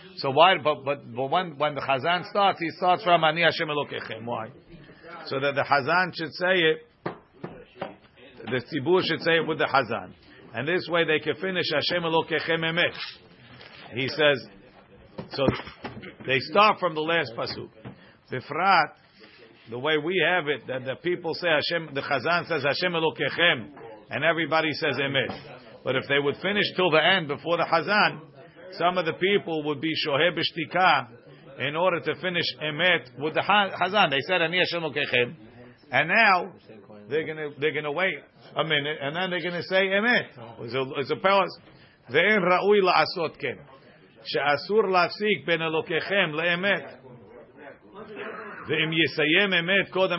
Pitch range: 140-180 Hz